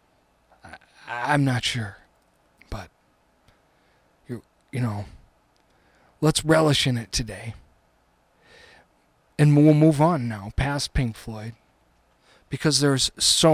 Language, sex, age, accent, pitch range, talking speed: English, male, 40-59, American, 120-160 Hz, 100 wpm